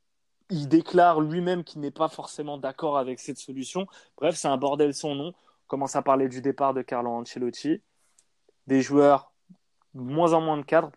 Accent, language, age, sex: French, French, 20-39, male